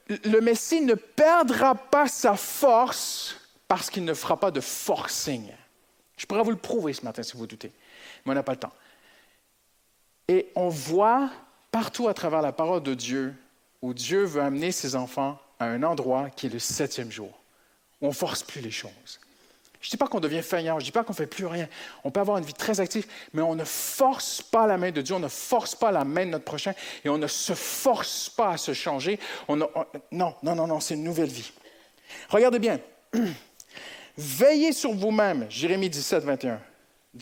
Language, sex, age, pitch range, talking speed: French, male, 50-69, 145-225 Hz, 210 wpm